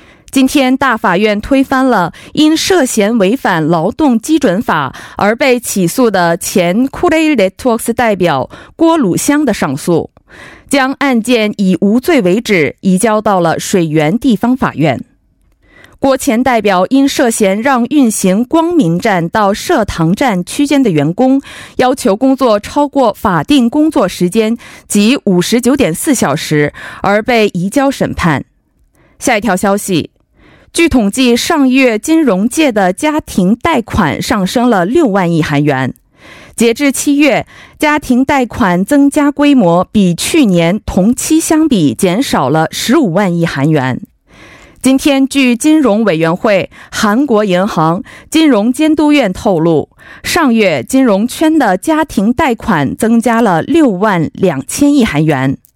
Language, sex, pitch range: Korean, female, 190-275 Hz